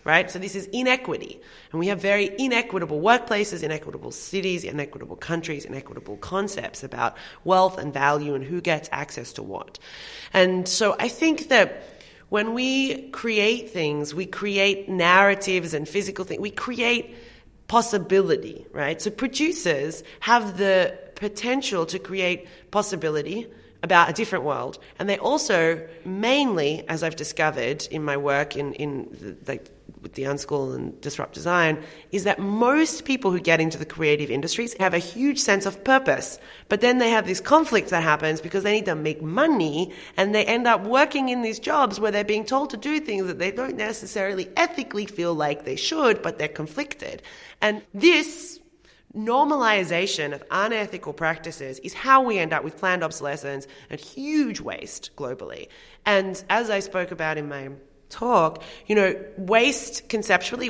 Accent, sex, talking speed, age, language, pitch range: Australian, female, 165 wpm, 30-49, English, 165-235 Hz